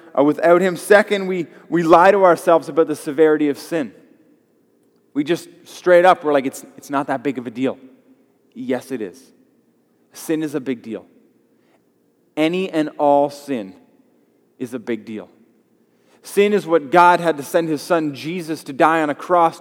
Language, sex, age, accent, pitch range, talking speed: English, male, 20-39, American, 140-195 Hz, 180 wpm